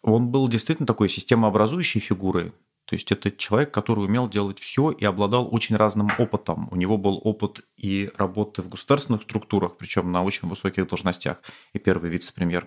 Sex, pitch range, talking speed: male, 95-115 Hz, 170 wpm